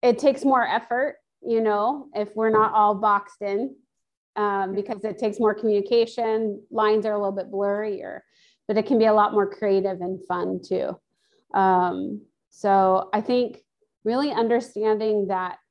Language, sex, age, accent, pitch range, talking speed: English, female, 30-49, American, 200-235 Hz, 160 wpm